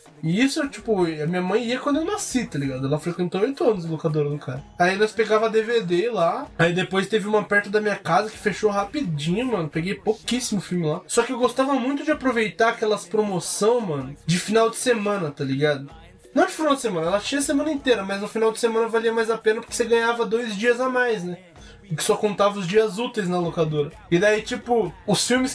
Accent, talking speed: Brazilian, 230 wpm